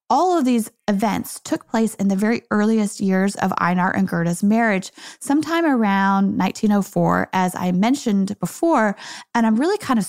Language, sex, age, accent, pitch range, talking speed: English, female, 20-39, American, 195-260 Hz, 165 wpm